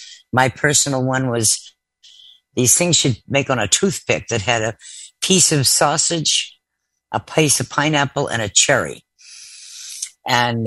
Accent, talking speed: American, 145 wpm